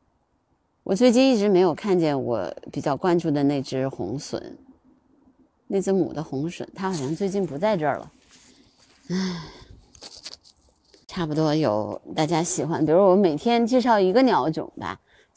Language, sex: Chinese, female